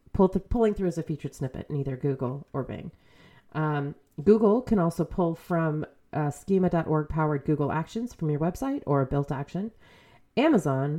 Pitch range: 150-190 Hz